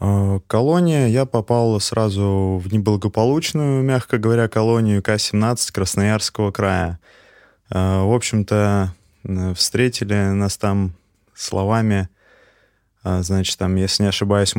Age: 20-39